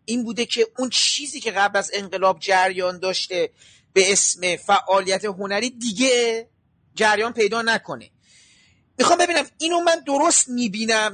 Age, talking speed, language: 40-59, 135 wpm, Persian